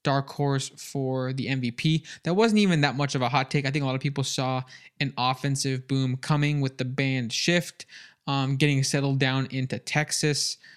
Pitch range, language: 135-150 Hz, English